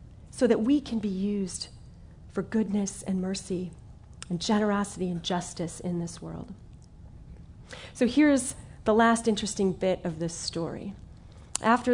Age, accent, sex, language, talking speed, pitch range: 30-49, American, female, English, 135 wpm, 190-255 Hz